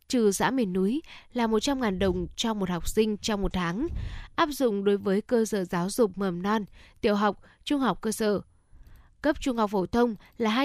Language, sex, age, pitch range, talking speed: Vietnamese, female, 10-29, 195-260 Hz, 205 wpm